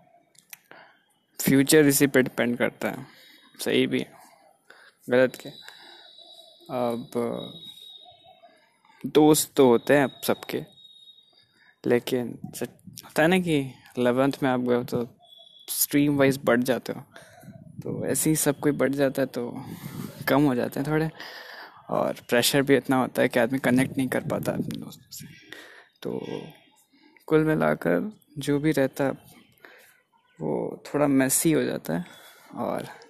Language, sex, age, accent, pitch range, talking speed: Hindi, male, 20-39, native, 130-170 Hz, 135 wpm